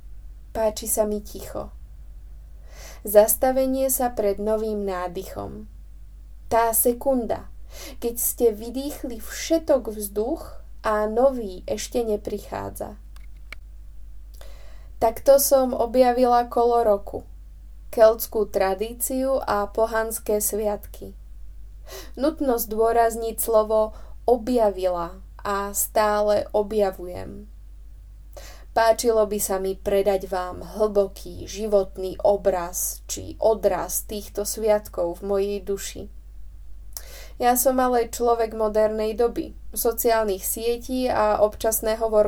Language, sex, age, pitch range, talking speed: Czech, female, 20-39, 180-235 Hz, 90 wpm